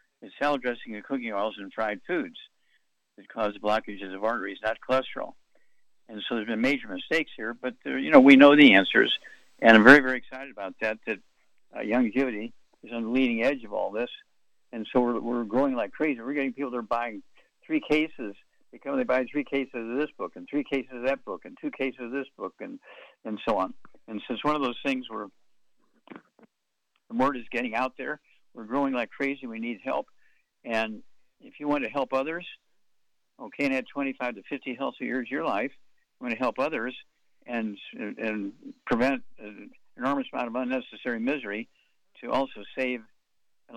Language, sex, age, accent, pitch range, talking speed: English, male, 60-79, American, 115-140 Hz, 195 wpm